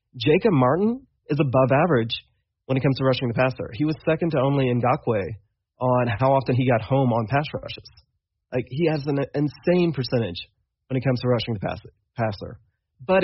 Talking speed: 185 wpm